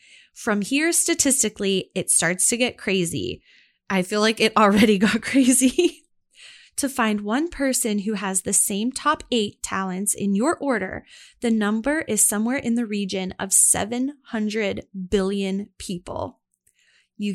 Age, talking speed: 10-29, 140 wpm